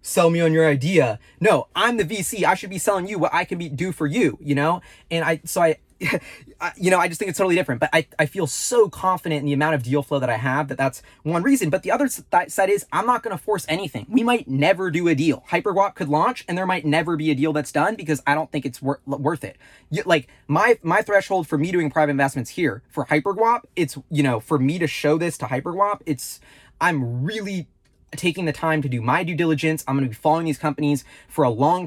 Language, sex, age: English, male, 20-39